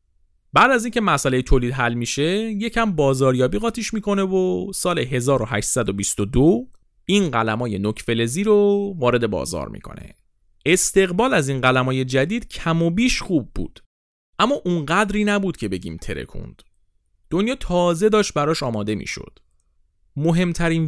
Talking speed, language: 140 wpm, Persian